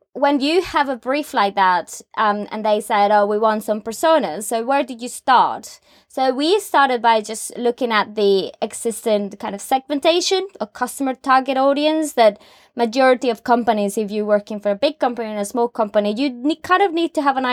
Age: 20-39